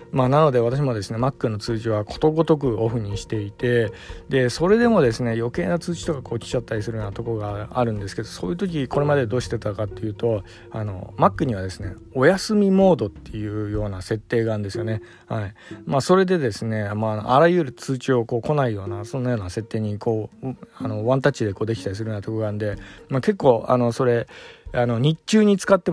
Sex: male